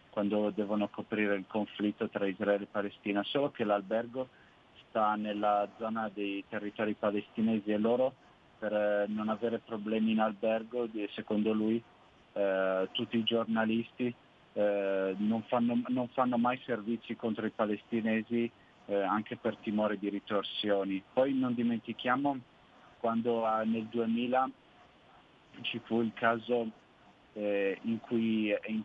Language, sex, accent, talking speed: Italian, male, native, 125 wpm